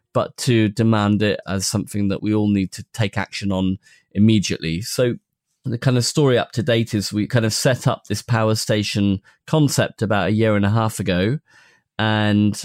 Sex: male